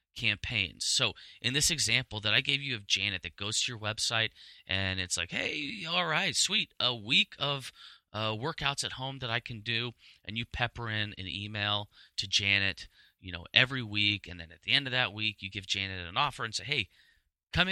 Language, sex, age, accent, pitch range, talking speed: English, male, 30-49, American, 95-125 Hz, 215 wpm